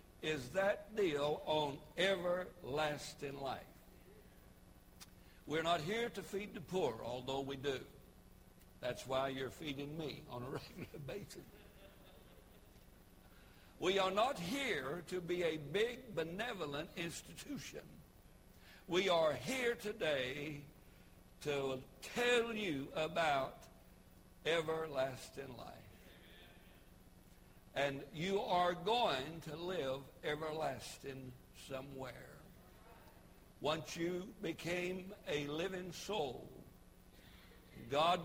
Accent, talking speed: American, 95 wpm